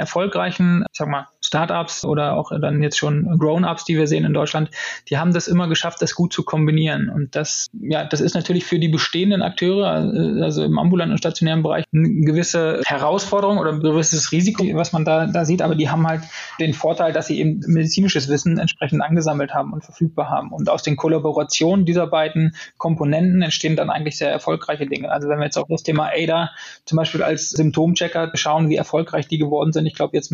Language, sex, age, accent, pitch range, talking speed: German, male, 20-39, German, 155-170 Hz, 205 wpm